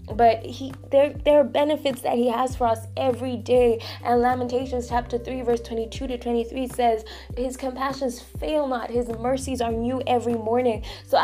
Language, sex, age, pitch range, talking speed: English, female, 10-29, 220-255 Hz, 175 wpm